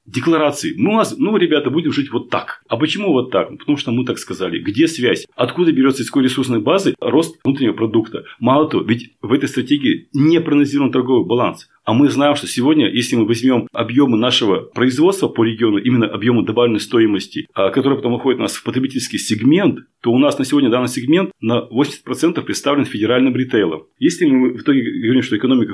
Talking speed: 190 wpm